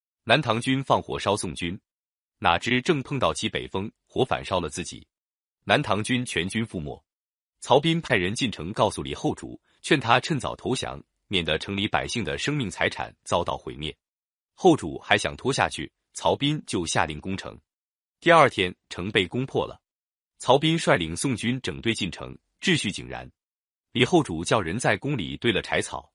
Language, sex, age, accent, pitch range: Chinese, male, 30-49, native, 90-130 Hz